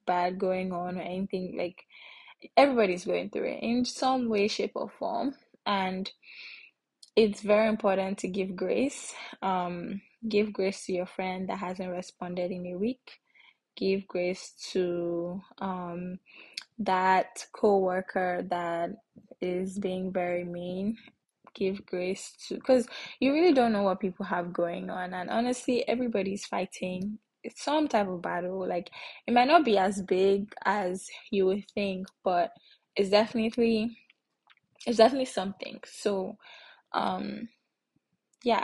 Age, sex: 10-29, female